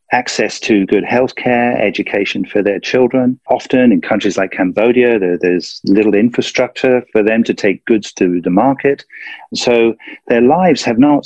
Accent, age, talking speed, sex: British, 40-59, 165 wpm, male